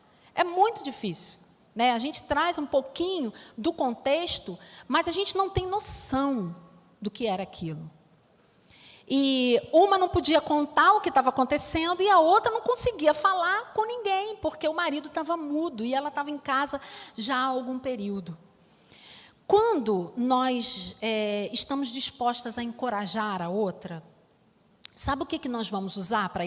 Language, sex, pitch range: Portuguese, female, 215-315 Hz